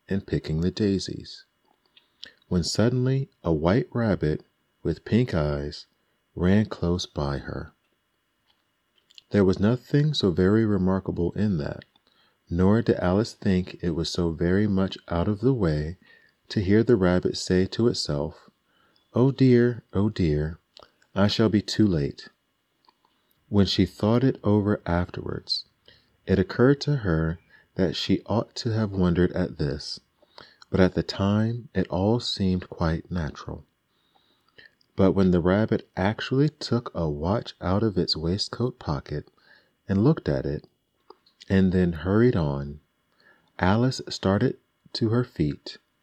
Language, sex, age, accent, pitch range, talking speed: English, male, 40-59, American, 85-115 Hz, 140 wpm